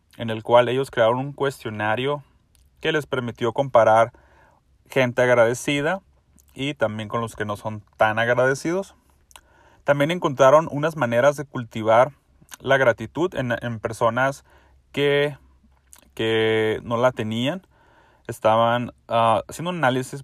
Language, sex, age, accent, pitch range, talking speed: Spanish, male, 30-49, Mexican, 110-130 Hz, 130 wpm